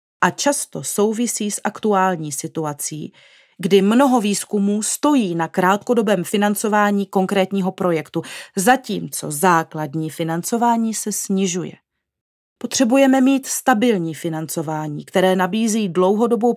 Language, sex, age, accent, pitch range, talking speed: Czech, female, 40-59, native, 170-215 Hz, 100 wpm